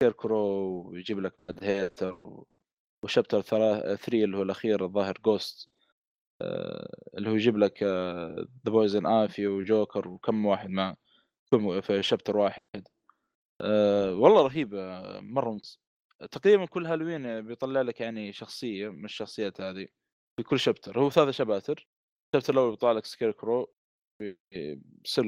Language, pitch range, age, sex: Arabic, 100-130 Hz, 20-39, male